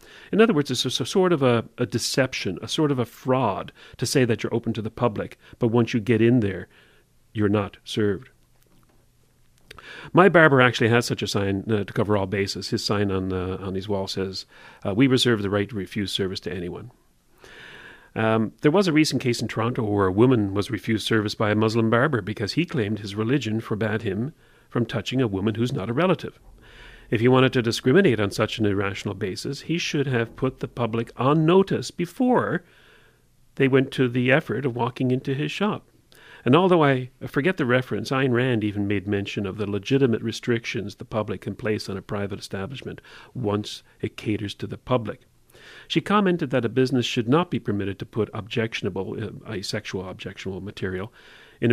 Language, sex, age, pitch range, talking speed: English, male, 40-59, 105-130 Hz, 195 wpm